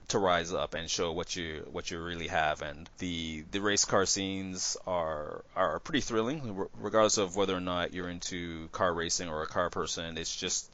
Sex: male